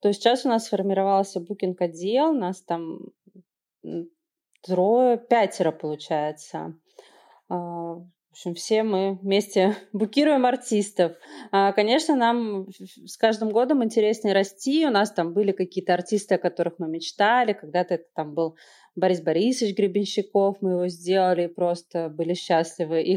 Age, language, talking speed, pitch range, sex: 30-49, Russian, 125 wpm, 175-215 Hz, female